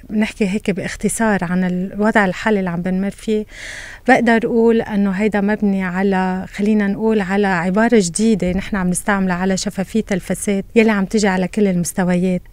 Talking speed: 160 wpm